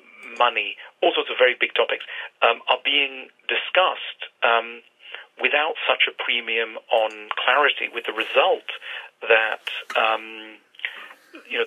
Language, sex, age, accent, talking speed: English, male, 40-59, British, 130 wpm